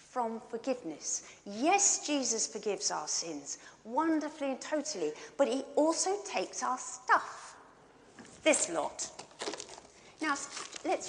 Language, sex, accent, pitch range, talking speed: English, female, British, 215-320 Hz, 110 wpm